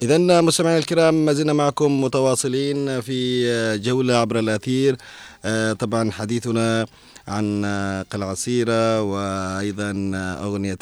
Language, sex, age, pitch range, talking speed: Arabic, male, 30-49, 100-120 Hz, 90 wpm